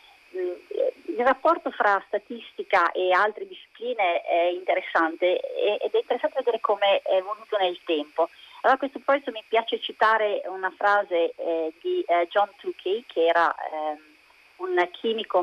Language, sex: Italian, female